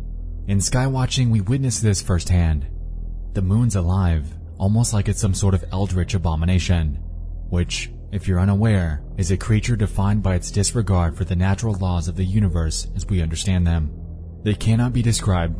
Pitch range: 85-110 Hz